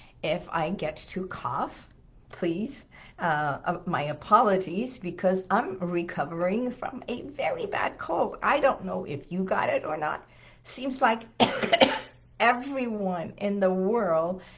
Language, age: English, 50-69